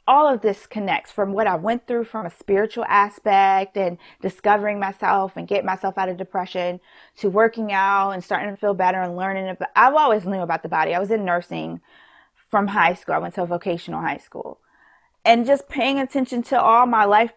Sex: female